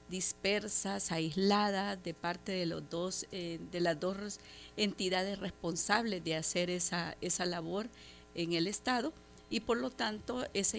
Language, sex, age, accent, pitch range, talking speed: Spanish, female, 50-69, American, 175-210 Hz, 145 wpm